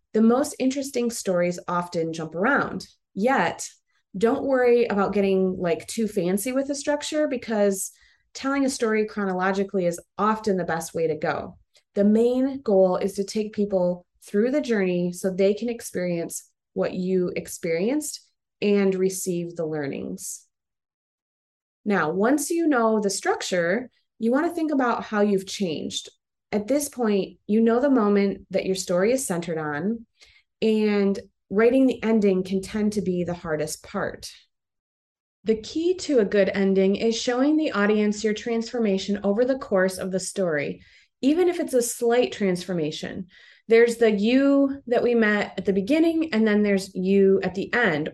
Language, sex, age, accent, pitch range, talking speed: English, female, 30-49, American, 190-240 Hz, 160 wpm